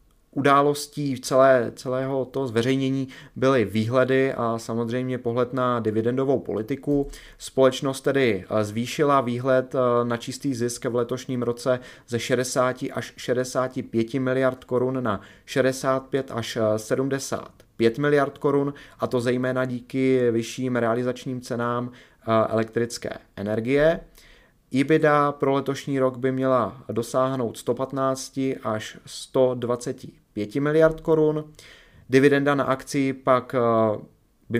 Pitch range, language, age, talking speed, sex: 120-135 Hz, Czech, 30-49, 105 wpm, male